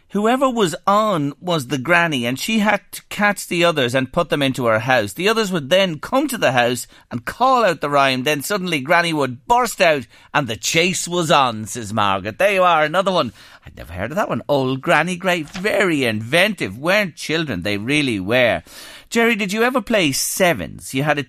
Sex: male